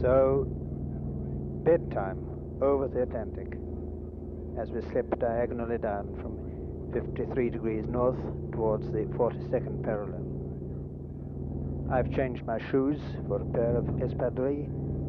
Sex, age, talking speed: male, 60-79, 105 wpm